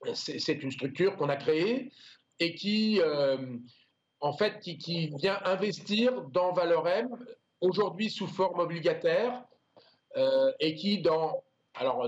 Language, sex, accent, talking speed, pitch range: French, male, French, 135 wpm, 150-195 Hz